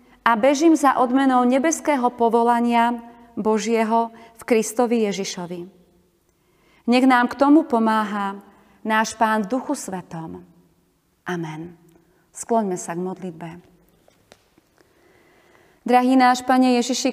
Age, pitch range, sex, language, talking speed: 30-49, 210-250 Hz, female, Slovak, 100 wpm